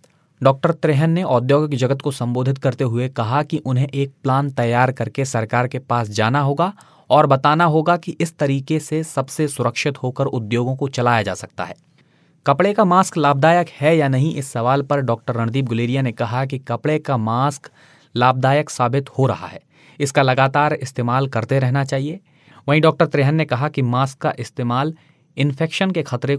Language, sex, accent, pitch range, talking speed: Hindi, male, native, 120-150 Hz, 180 wpm